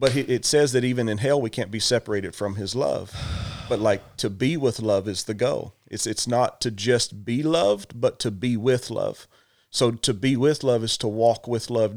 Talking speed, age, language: 225 wpm, 40-59, English